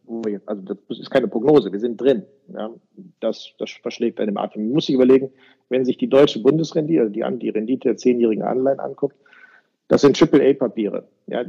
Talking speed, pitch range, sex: 185 wpm, 115-140 Hz, male